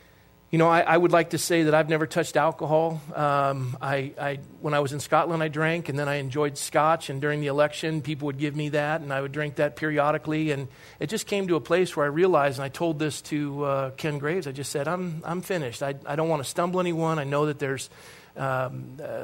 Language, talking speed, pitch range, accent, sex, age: English, 245 wpm, 140-160 Hz, American, male, 40-59